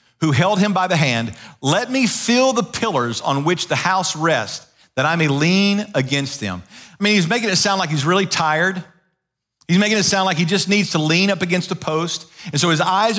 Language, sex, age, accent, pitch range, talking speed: English, male, 40-59, American, 140-205 Hz, 230 wpm